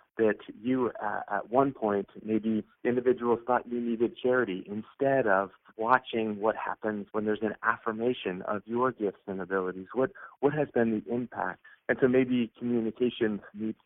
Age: 40-59